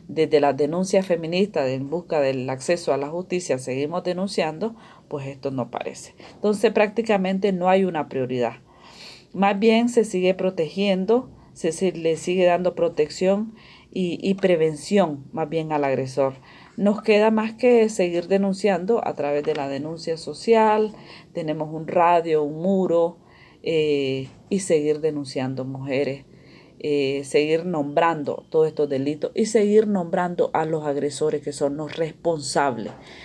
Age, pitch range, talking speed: 40-59, 145-190 Hz, 140 wpm